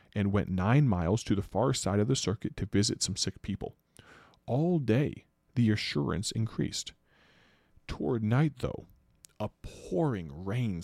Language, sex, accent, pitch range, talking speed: English, male, American, 95-120 Hz, 150 wpm